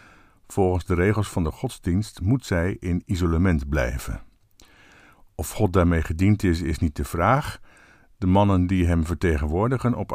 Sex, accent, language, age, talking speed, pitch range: male, Dutch, Dutch, 50-69, 155 wpm, 80-105 Hz